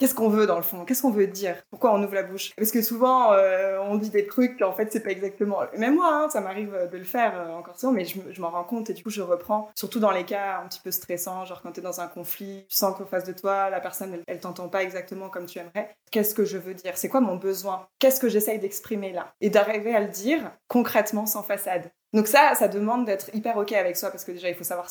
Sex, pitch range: female, 190-235 Hz